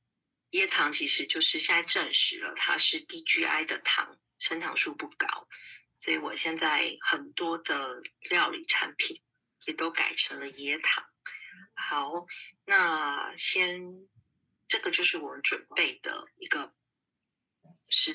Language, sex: Chinese, female